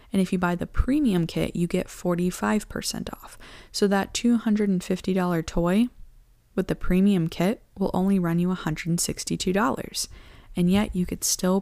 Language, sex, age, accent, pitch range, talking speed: English, female, 10-29, American, 170-200 Hz, 150 wpm